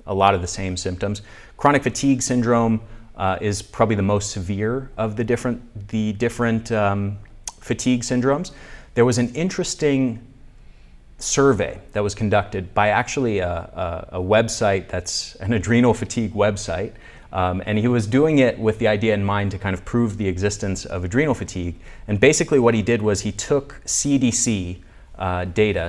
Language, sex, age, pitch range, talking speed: English, male, 30-49, 95-115 Hz, 170 wpm